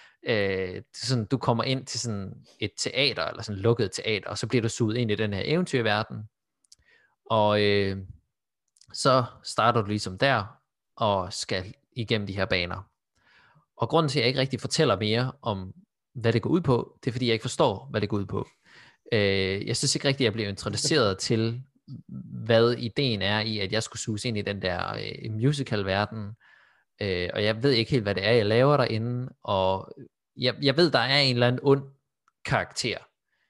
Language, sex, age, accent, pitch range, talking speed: Danish, male, 20-39, native, 100-130 Hz, 195 wpm